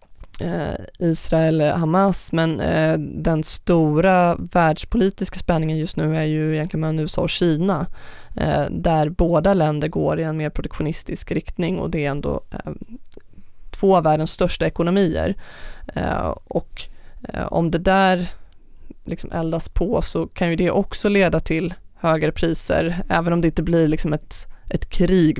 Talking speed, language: 140 wpm, Swedish